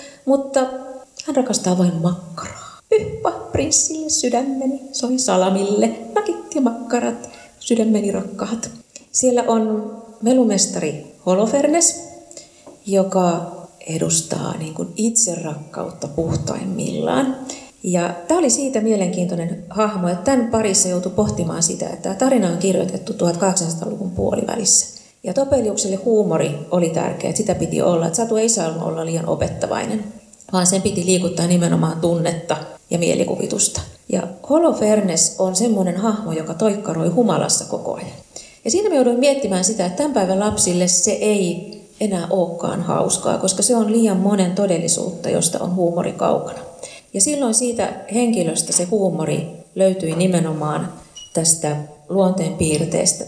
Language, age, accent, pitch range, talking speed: Finnish, 30-49, native, 175-235 Hz, 125 wpm